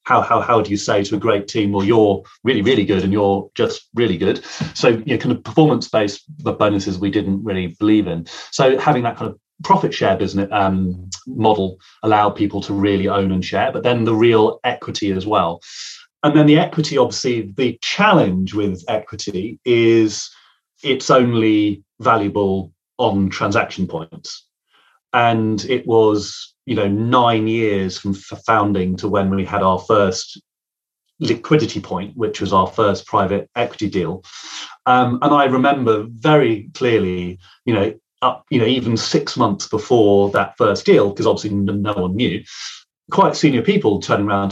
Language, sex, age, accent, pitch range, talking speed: English, male, 30-49, British, 100-125 Hz, 165 wpm